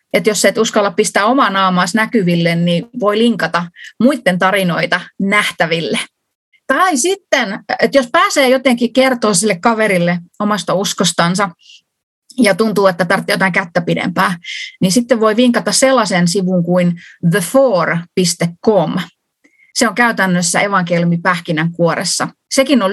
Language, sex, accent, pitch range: Finnish, female, native, 185-250 Hz